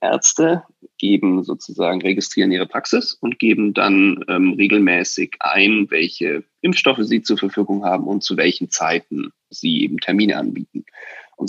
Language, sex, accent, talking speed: German, male, German, 140 wpm